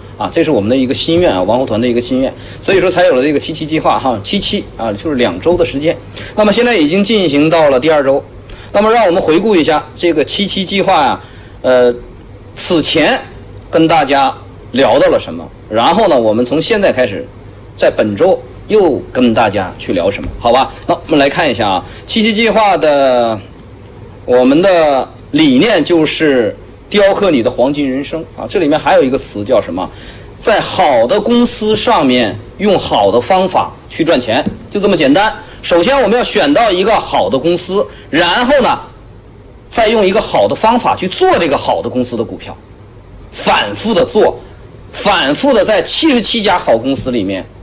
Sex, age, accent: male, 30-49, native